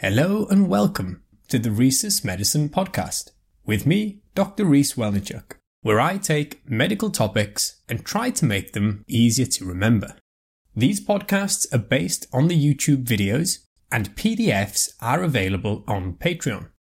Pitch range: 115-185 Hz